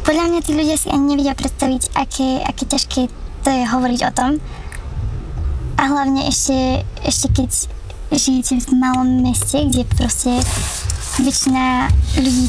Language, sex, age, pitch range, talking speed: Slovak, male, 10-29, 250-275 Hz, 140 wpm